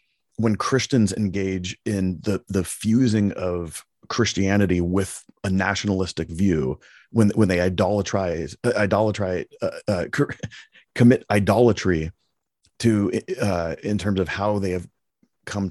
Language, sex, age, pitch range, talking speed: English, male, 30-49, 95-110 Hz, 120 wpm